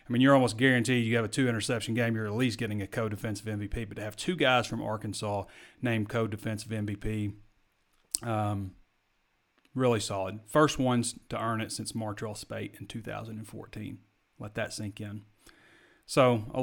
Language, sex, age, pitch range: English, male, 30-49, 110-130 Hz